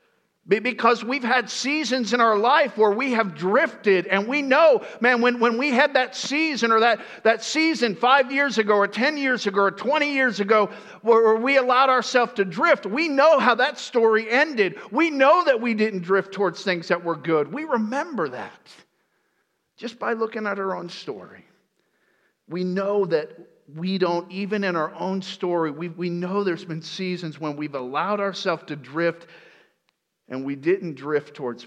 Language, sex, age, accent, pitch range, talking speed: English, male, 50-69, American, 165-240 Hz, 180 wpm